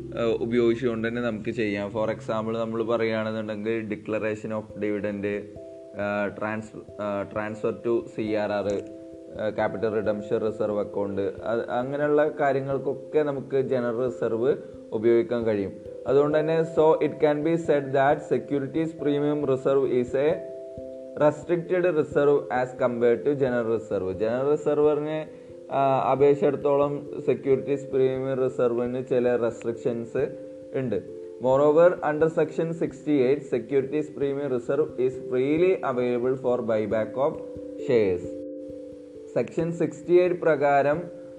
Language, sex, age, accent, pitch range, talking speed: Malayalam, male, 20-39, native, 115-150 Hz, 105 wpm